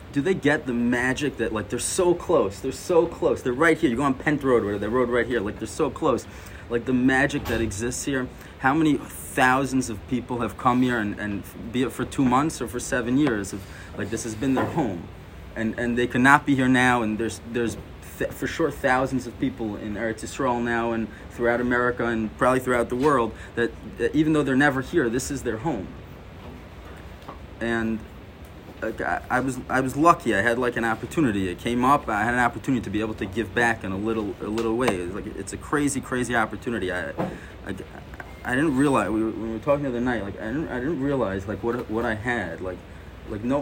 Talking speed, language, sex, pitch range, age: 225 wpm, English, male, 105-130 Hz, 30-49